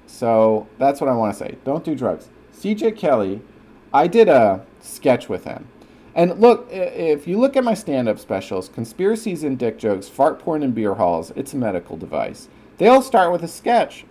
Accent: American